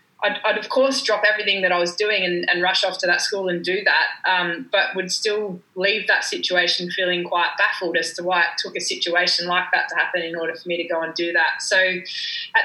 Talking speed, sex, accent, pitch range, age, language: 245 wpm, female, Australian, 175-200 Hz, 20-39, English